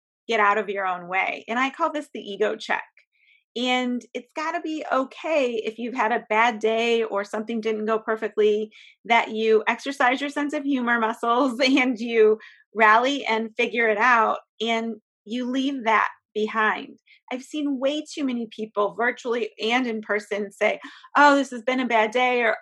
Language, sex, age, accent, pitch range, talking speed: English, female, 30-49, American, 215-265 Hz, 180 wpm